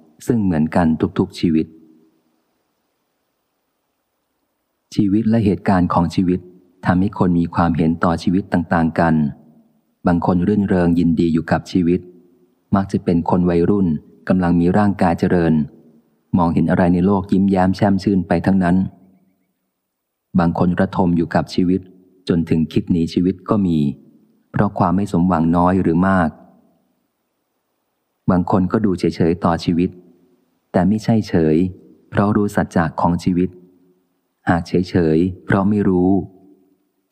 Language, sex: Thai, male